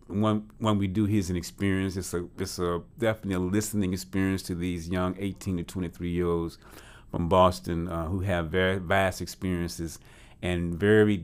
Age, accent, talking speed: 40-59, American, 170 wpm